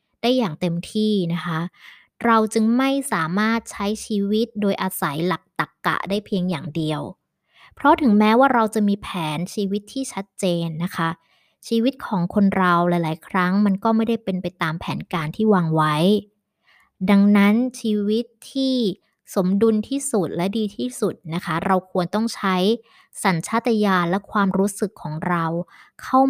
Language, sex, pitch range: Thai, male, 180-225 Hz